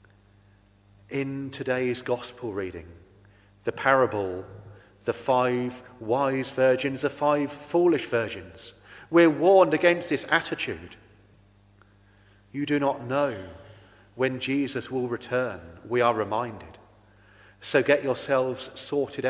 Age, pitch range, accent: 40-59, 100-130 Hz, British